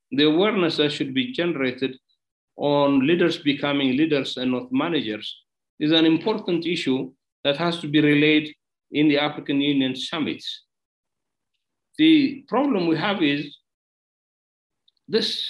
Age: 60-79